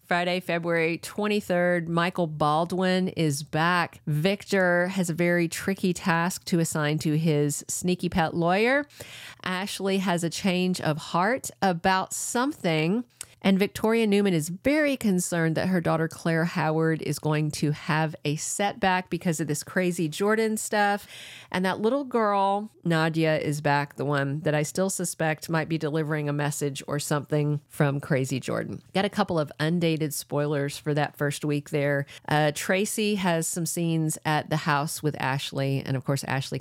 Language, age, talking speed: English, 40-59, 160 wpm